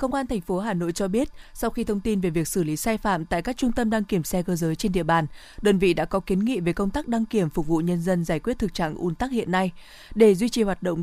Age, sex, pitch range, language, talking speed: 20-39, female, 175-220 Hz, Vietnamese, 315 wpm